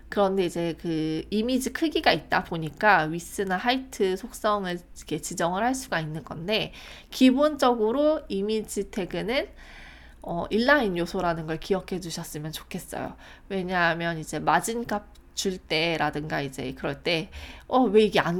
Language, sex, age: Korean, female, 20-39